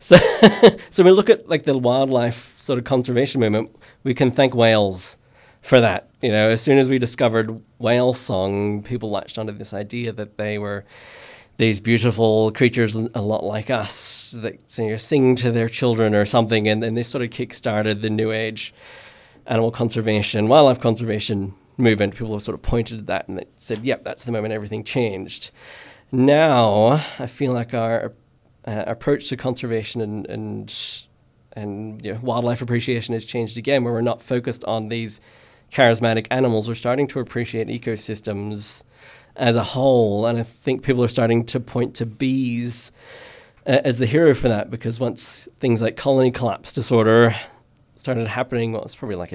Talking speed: 180 wpm